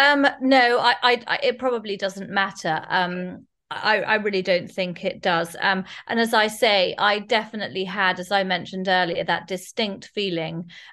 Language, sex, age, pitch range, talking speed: English, female, 30-49, 170-200 Hz, 160 wpm